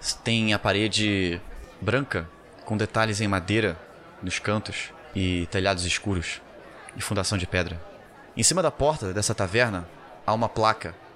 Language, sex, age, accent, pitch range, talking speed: Portuguese, male, 20-39, Brazilian, 100-130 Hz, 140 wpm